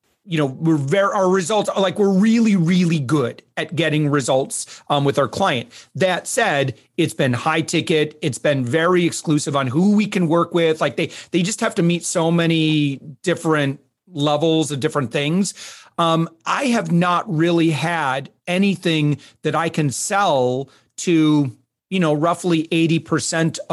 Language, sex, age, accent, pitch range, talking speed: English, male, 30-49, American, 145-180 Hz, 165 wpm